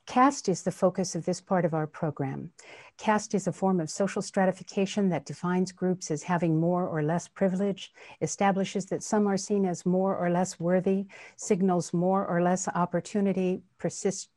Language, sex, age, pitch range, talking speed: English, female, 60-79, 175-205 Hz, 175 wpm